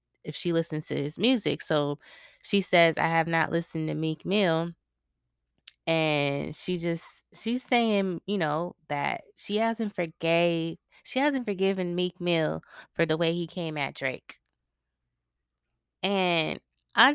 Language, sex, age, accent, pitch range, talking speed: English, female, 20-39, American, 155-190 Hz, 145 wpm